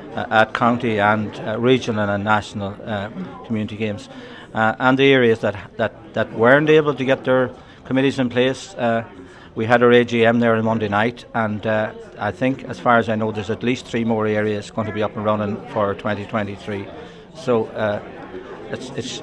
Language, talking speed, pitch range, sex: English, 190 wpm, 110-125 Hz, male